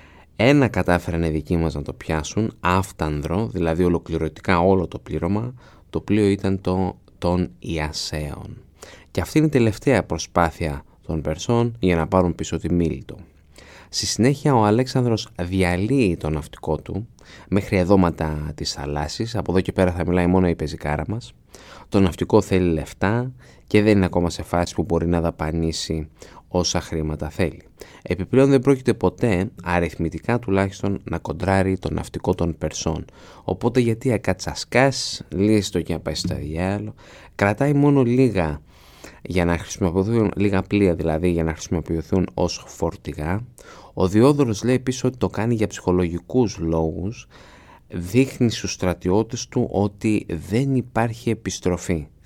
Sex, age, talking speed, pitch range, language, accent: male, 20-39, 145 wpm, 80-105 Hz, Greek, native